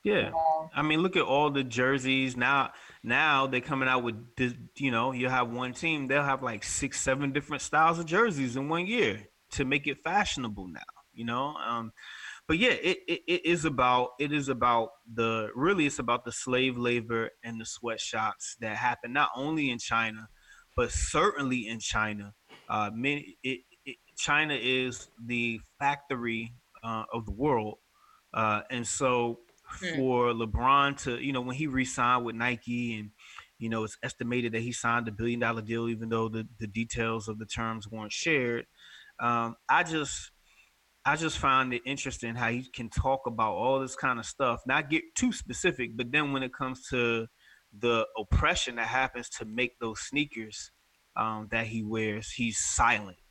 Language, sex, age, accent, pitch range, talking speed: English, male, 20-39, American, 115-140 Hz, 180 wpm